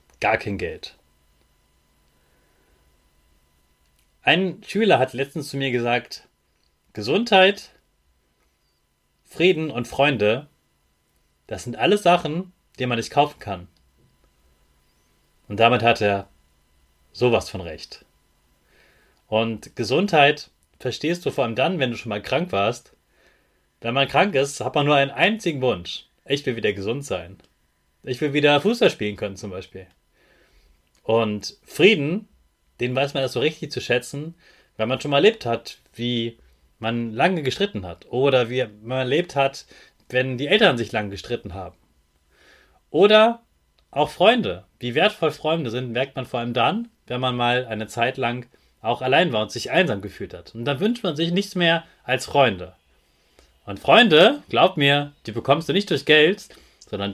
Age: 30-49